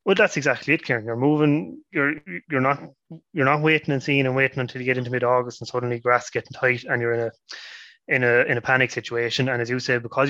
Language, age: English, 20-39